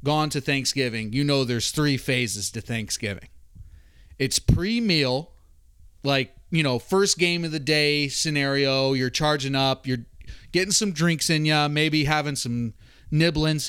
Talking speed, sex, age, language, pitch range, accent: 150 wpm, male, 30-49, English, 115-155 Hz, American